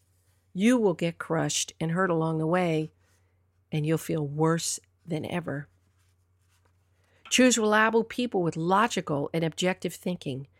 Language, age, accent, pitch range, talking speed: English, 50-69, American, 140-210 Hz, 130 wpm